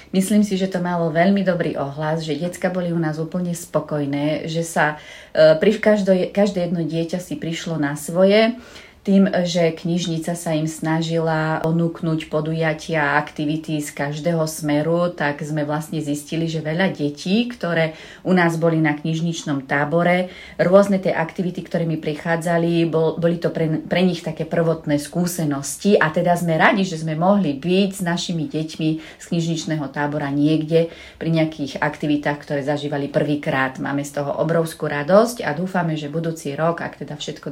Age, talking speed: 30-49, 160 wpm